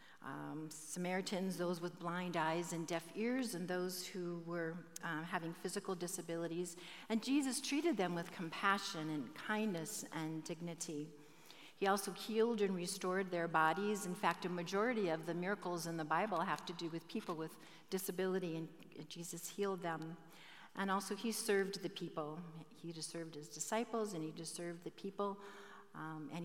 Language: English